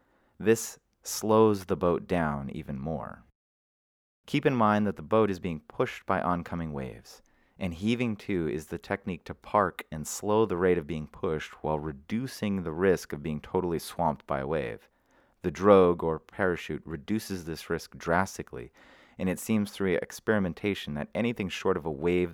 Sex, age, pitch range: male, 30-49, 80-105 Hz